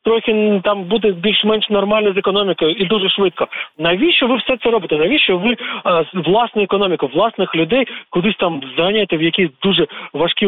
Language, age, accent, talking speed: Ukrainian, 40-59, native, 165 wpm